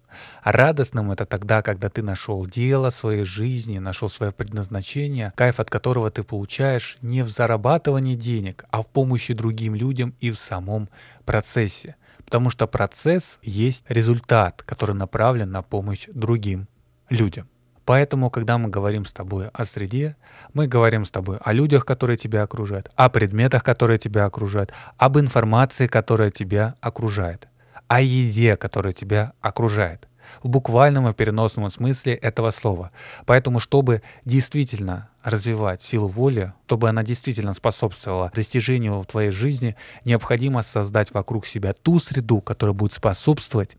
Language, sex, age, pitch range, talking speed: Russian, male, 20-39, 105-125 Hz, 140 wpm